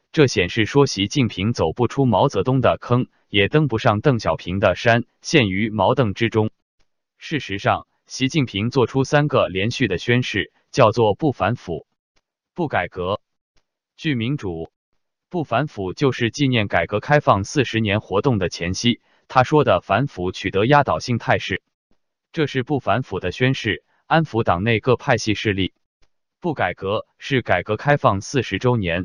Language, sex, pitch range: Chinese, male, 105-140 Hz